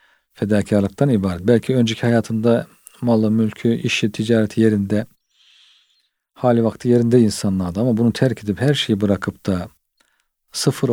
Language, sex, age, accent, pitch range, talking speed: Turkish, male, 50-69, native, 105-120 Hz, 125 wpm